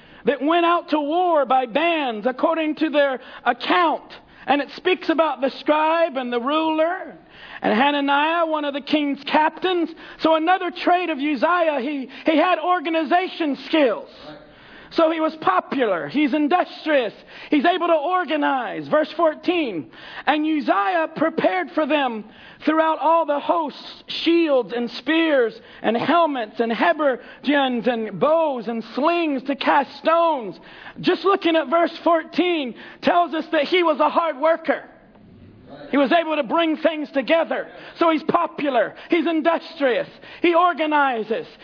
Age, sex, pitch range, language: 40-59, male, 275-330 Hz, English